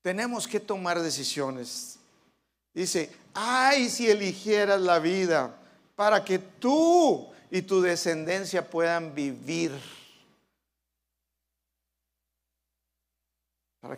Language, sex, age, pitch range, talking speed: Spanish, male, 50-69, 145-215 Hz, 80 wpm